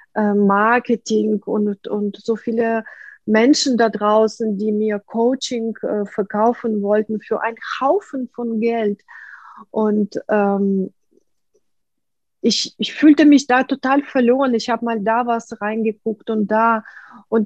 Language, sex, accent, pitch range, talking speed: German, female, German, 210-270 Hz, 125 wpm